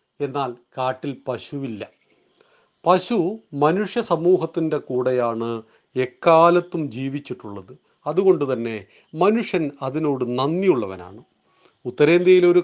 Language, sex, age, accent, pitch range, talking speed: Malayalam, male, 40-59, native, 130-165 Hz, 70 wpm